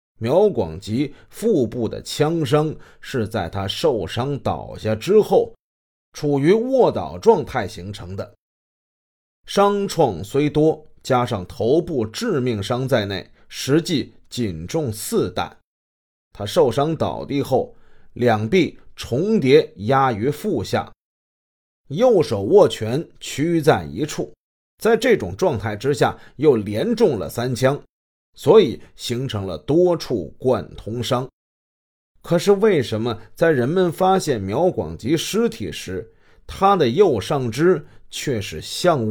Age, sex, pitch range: 30-49, male, 105-160 Hz